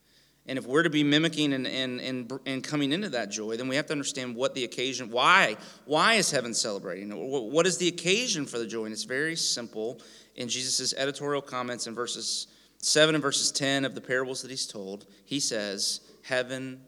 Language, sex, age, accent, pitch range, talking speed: English, male, 30-49, American, 110-150 Hz, 205 wpm